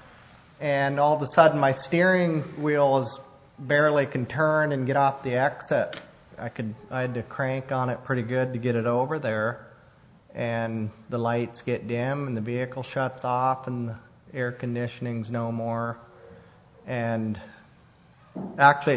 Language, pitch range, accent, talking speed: English, 120-135 Hz, American, 160 wpm